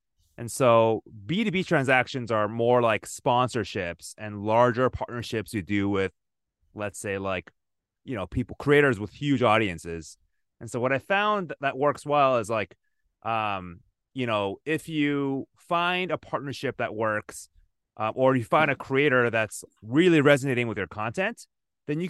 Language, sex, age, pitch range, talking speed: English, male, 30-49, 105-145 Hz, 160 wpm